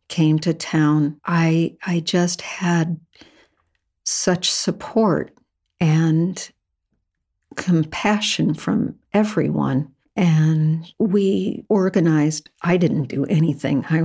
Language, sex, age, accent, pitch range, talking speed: English, female, 50-69, American, 150-180 Hz, 90 wpm